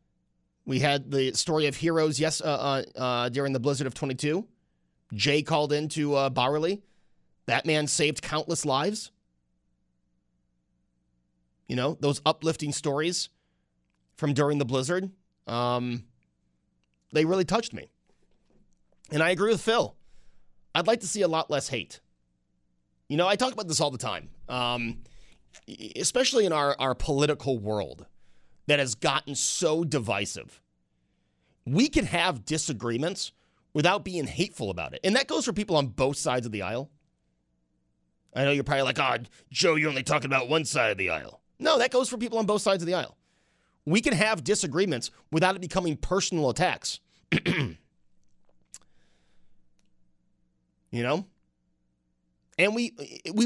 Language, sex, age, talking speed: English, male, 30-49, 150 wpm